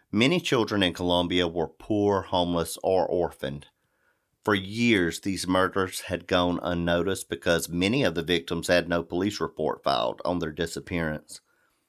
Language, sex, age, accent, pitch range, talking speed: English, male, 40-59, American, 85-100 Hz, 145 wpm